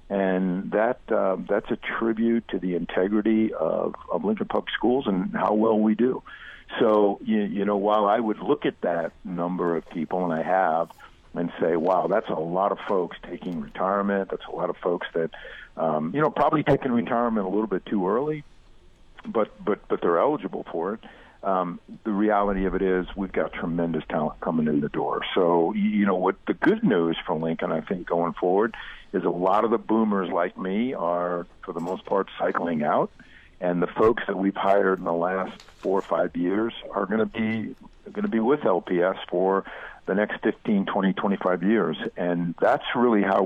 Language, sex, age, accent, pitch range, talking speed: English, male, 50-69, American, 90-110 Hz, 200 wpm